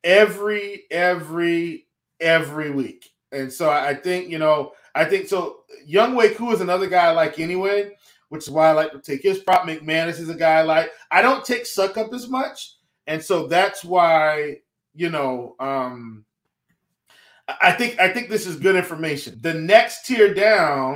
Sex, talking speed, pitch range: male, 180 wpm, 165-225 Hz